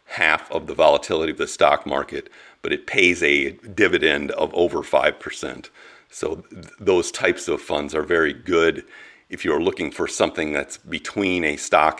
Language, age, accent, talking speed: English, 50-69, American, 170 wpm